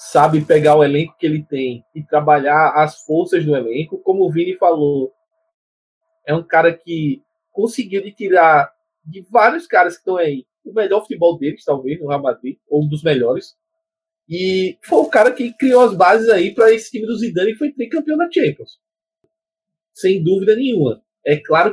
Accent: Brazilian